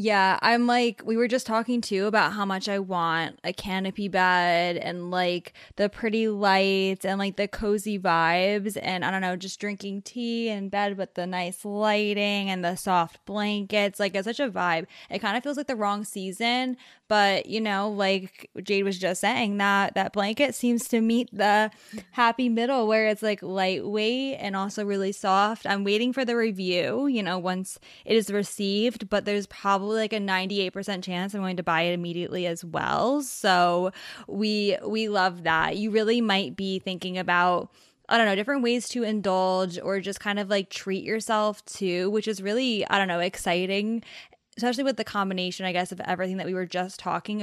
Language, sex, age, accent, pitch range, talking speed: English, female, 10-29, American, 190-215 Hz, 195 wpm